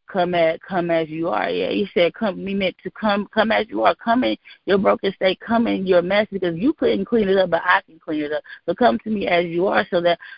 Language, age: English, 20-39